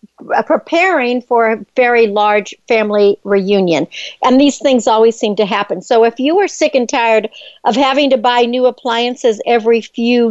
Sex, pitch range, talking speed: female, 215-270 Hz, 170 wpm